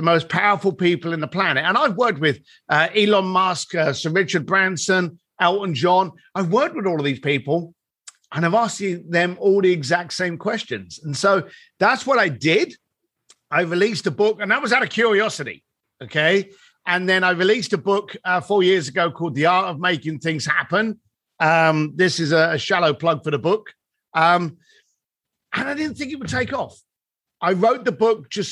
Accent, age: British, 50-69